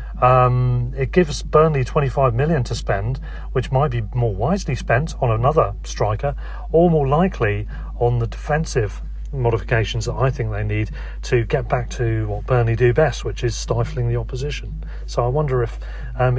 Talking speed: 170 wpm